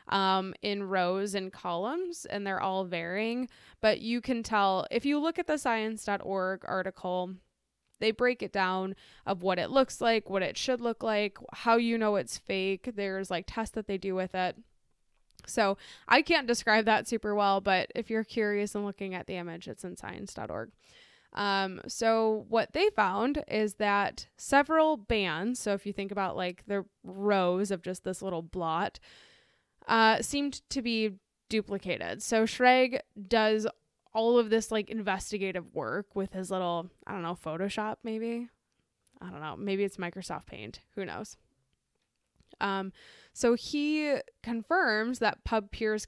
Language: English